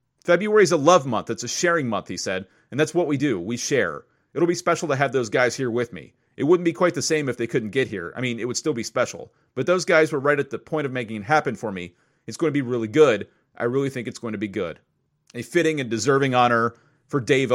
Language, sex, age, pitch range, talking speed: English, male, 30-49, 110-150 Hz, 275 wpm